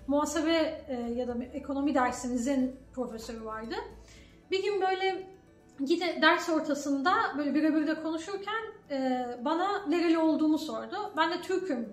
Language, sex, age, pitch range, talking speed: Turkish, female, 10-29, 260-320 Hz, 125 wpm